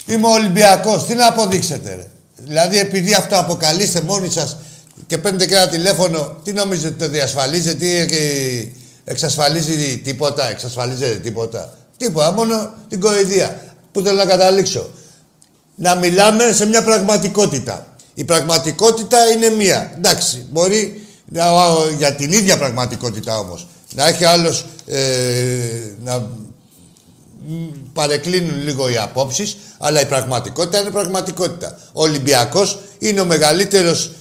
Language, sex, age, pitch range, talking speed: Greek, male, 60-79, 150-200 Hz, 125 wpm